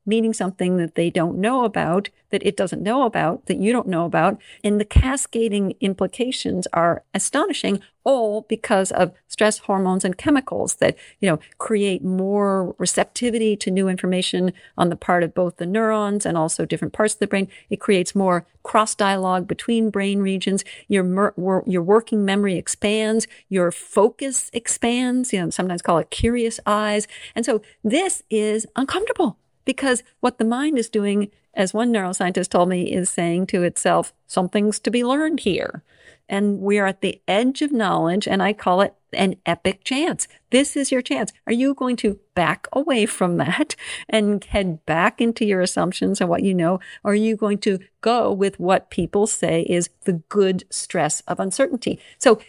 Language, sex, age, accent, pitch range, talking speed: English, female, 50-69, American, 190-240 Hz, 175 wpm